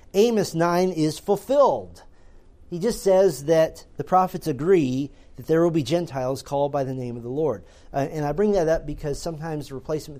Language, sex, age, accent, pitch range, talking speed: English, male, 40-59, American, 135-195 Hz, 190 wpm